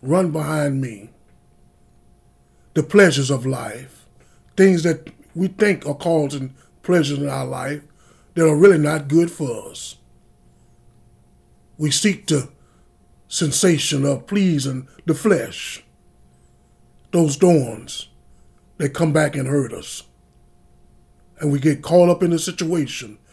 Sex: male